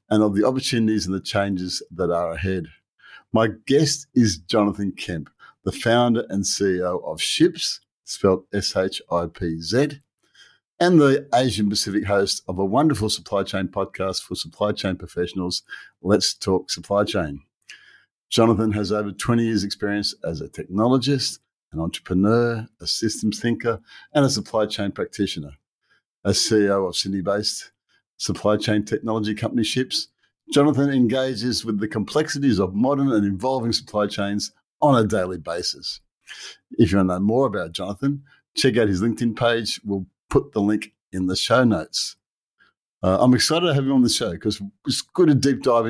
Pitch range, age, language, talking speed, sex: 100-120 Hz, 50-69, English, 160 wpm, male